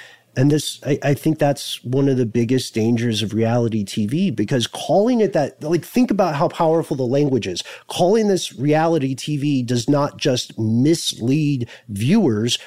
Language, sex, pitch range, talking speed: English, male, 120-170 Hz, 165 wpm